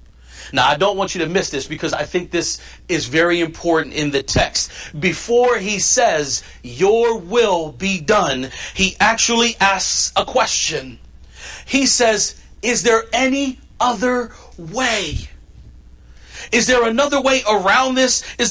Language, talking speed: English, 145 wpm